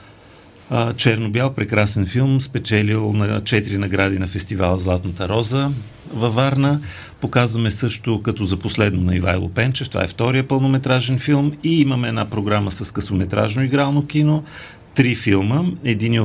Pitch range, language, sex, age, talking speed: 100-130 Hz, Bulgarian, male, 40-59, 135 wpm